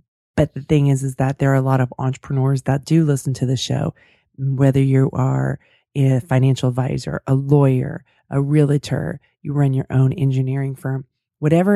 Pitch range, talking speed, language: 135-160 Hz, 180 wpm, English